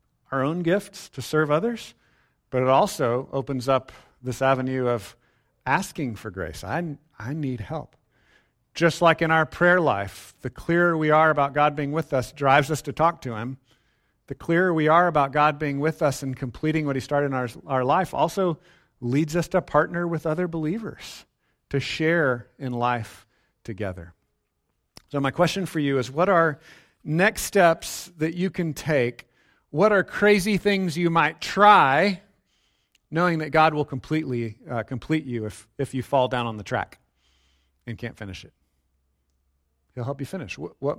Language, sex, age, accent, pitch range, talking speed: English, male, 50-69, American, 120-160 Hz, 175 wpm